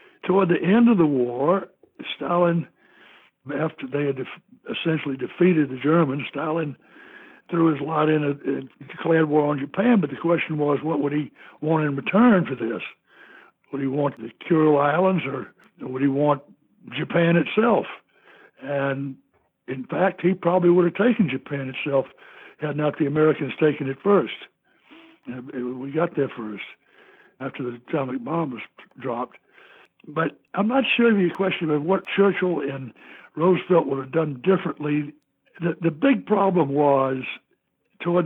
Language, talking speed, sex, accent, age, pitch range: English, 150 wpm, male, American, 60-79, 140-180 Hz